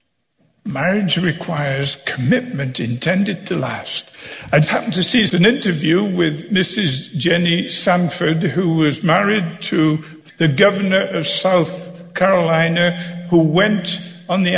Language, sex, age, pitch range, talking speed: English, male, 60-79, 160-205 Hz, 120 wpm